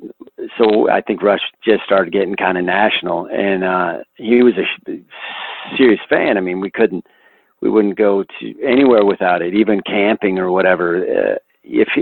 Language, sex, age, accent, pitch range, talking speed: English, male, 50-69, American, 100-125 Hz, 170 wpm